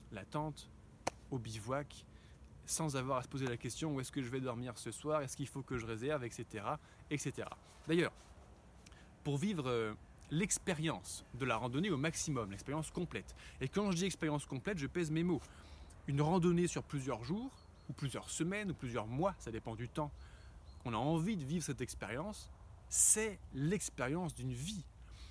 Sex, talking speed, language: male, 175 wpm, French